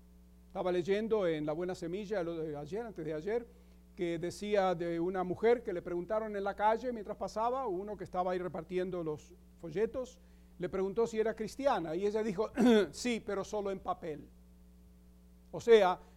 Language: English